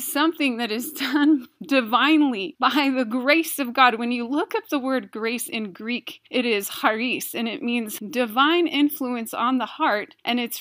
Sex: female